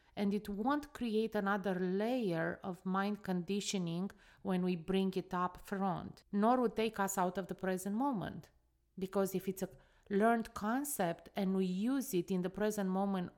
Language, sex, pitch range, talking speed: English, female, 185-220 Hz, 175 wpm